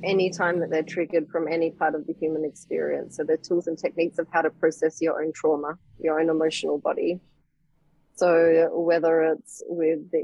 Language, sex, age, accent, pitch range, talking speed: English, female, 30-49, Australian, 155-170 Hz, 195 wpm